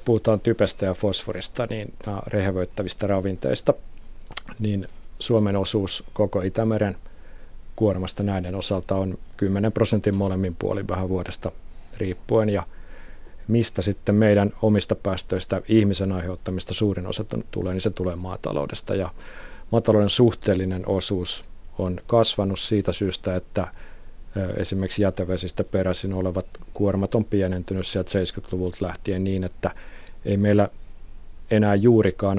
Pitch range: 90-105 Hz